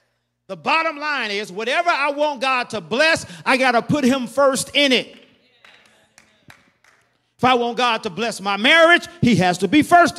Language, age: English, 40-59